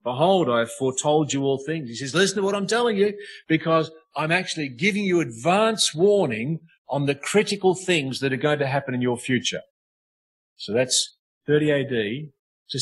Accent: Australian